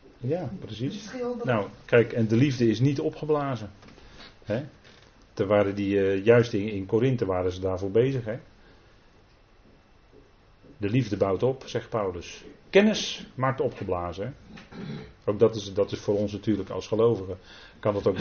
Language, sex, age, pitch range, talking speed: Dutch, male, 40-59, 95-130 Hz, 150 wpm